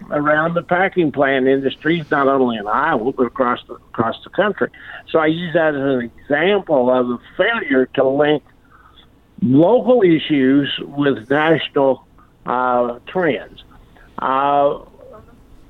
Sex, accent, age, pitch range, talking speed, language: male, American, 50-69, 135-180 Hz, 130 wpm, English